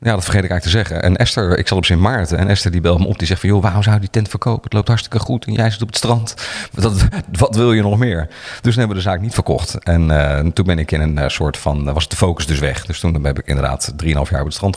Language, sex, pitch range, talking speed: Dutch, male, 85-110 Hz, 315 wpm